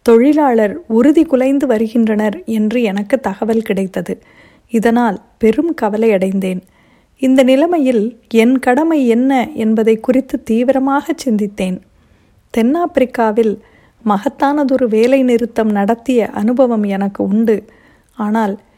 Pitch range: 215-260 Hz